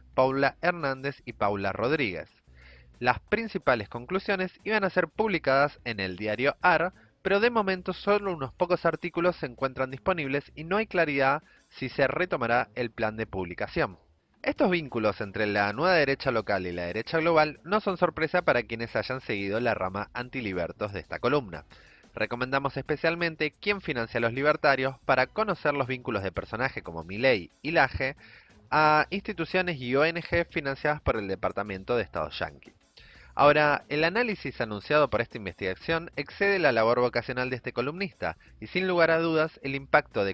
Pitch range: 115-170 Hz